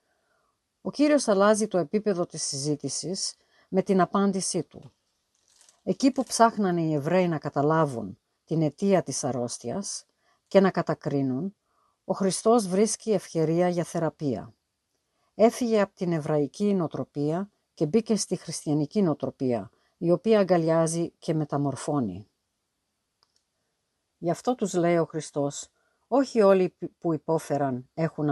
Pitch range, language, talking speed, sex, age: 150-195 Hz, Greek, 120 wpm, female, 50-69